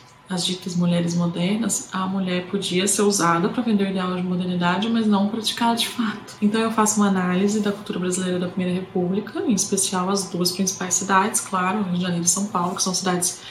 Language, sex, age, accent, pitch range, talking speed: Portuguese, female, 20-39, Brazilian, 180-195 Hz, 205 wpm